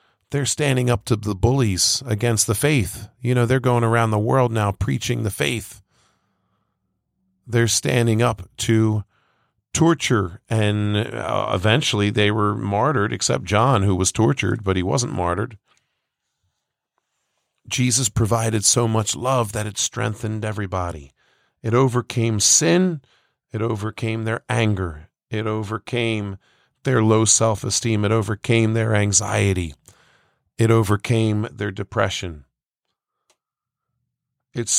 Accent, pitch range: American, 105-120 Hz